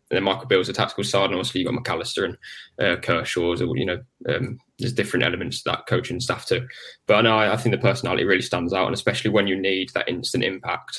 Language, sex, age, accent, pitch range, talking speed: English, male, 10-29, British, 95-120 Hz, 255 wpm